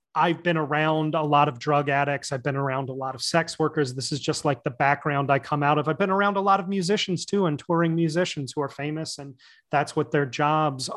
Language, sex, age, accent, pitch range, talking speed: English, male, 30-49, American, 145-175 Hz, 245 wpm